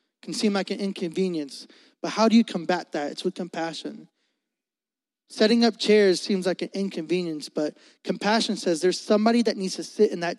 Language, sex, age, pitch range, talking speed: English, male, 20-39, 185-265 Hz, 185 wpm